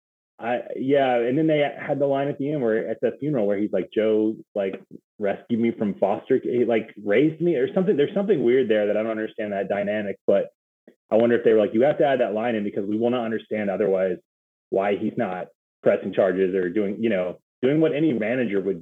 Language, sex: English, male